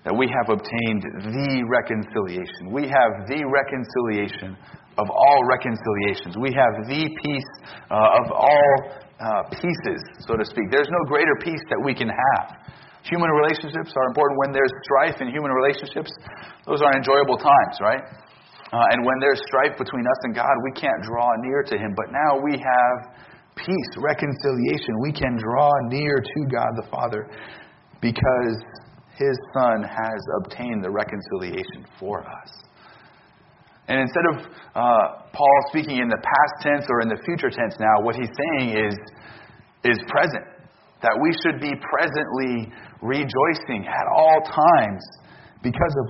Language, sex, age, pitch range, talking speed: English, male, 40-59, 120-145 Hz, 155 wpm